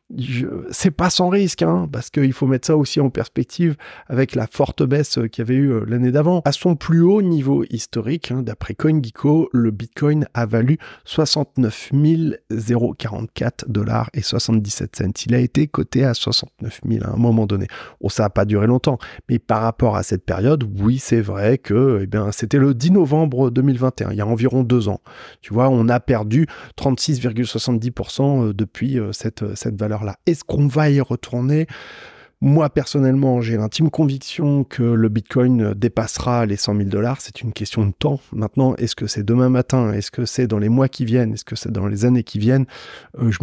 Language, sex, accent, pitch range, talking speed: French, male, French, 110-140 Hz, 190 wpm